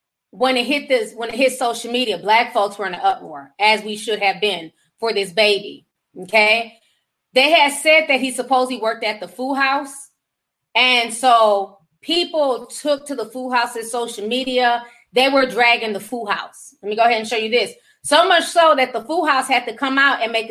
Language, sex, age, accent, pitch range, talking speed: English, female, 20-39, American, 215-265 Hz, 210 wpm